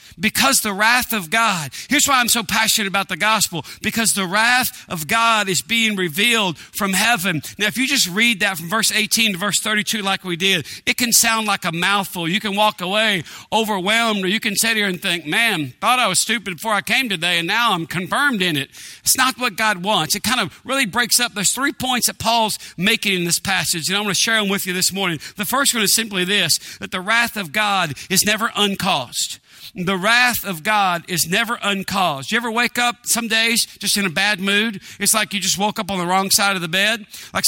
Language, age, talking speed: English, 50-69, 235 wpm